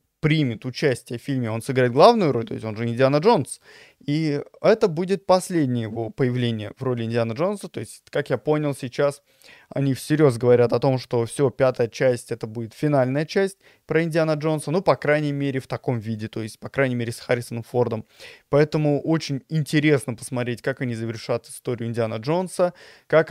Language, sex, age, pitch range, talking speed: Russian, male, 20-39, 125-155 Hz, 185 wpm